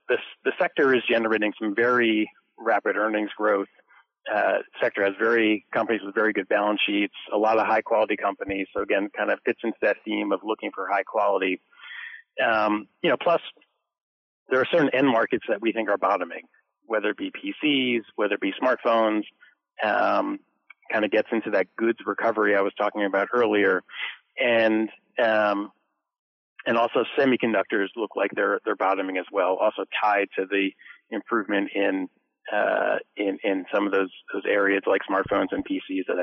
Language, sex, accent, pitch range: English, male, American, 100-130 Hz